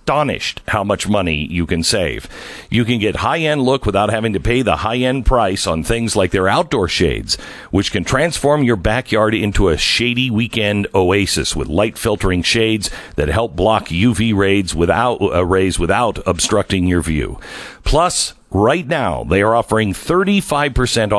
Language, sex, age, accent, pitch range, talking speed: English, male, 50-69, American, 95-135 Hz, 160 wpm